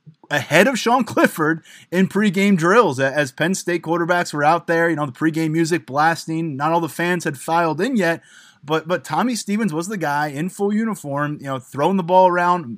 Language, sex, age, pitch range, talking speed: English, male, 20-39, 150-180 Hz, 205 wpm